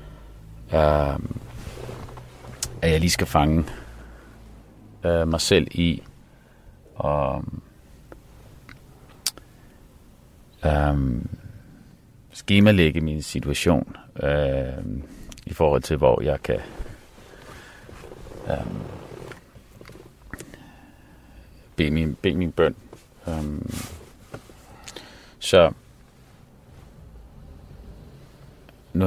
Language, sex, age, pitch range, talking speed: Danish, male, 40-59, 75-95 Hz, 45 wpm